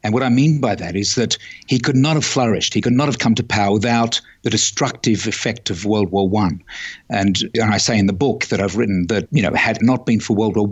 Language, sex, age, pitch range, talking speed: English, male, 50-69, 105-125 Hz, 270 wpm